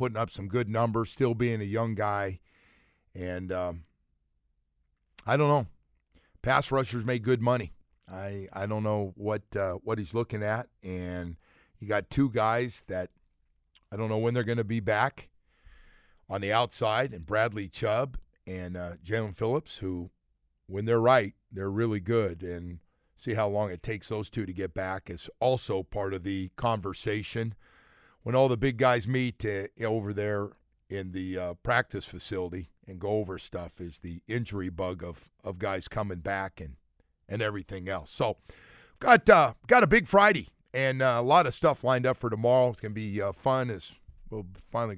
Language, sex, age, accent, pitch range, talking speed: English, male, 50-69, American, 90-115 Hz, 180 wpm